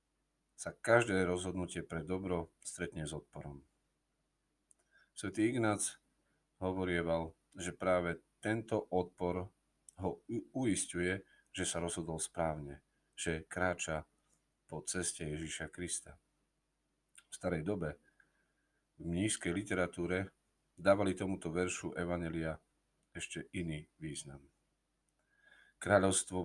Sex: male